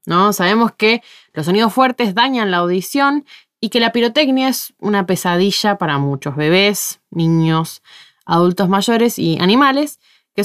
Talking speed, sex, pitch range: 145 wpm, female, 175-240 Hz